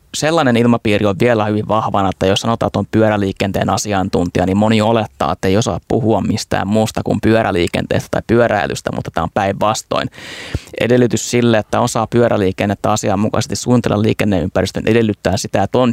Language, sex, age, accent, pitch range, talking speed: Finnish, male, 20-39, native, 100-120 Hz, 160 wpm